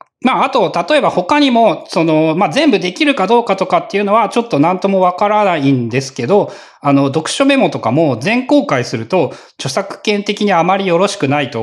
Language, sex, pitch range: Japanese, male, 130-205 Hz